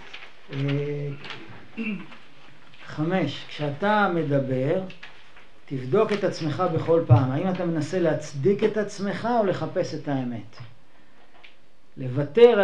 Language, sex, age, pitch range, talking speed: Hebrew, male, 40-59, 145-185 Hz, 90 wpm